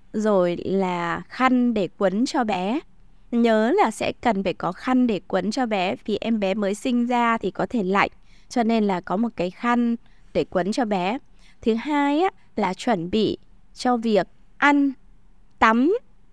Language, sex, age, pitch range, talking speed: Vietnamese, female, 20-39, 195-270 Hz, 175 wpm